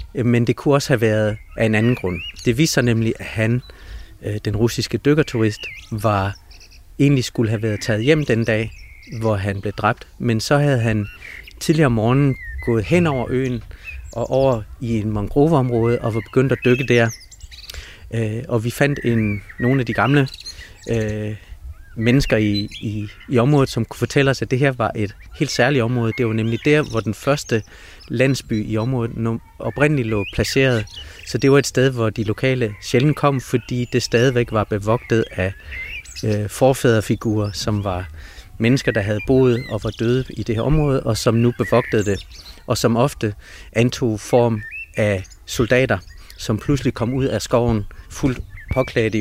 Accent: native